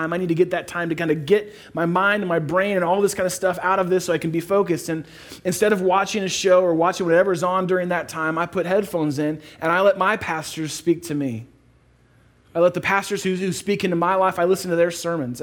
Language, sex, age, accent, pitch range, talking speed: English, male, 30-49, American, 140-180 Hz, 270 wpm